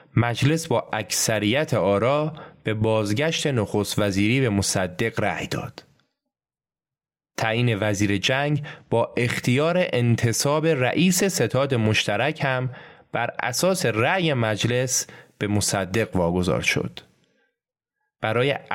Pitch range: 105-150 Hz